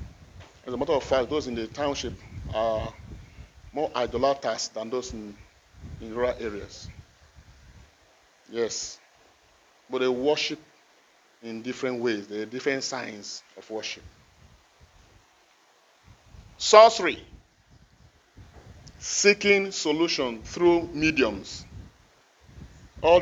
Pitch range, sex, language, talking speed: 95-155 Hz, male, English, 95 wpm